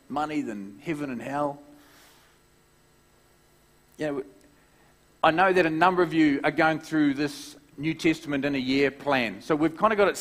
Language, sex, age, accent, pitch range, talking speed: English, male, 40-59, Australian, 130-155 Hz, 175 wpm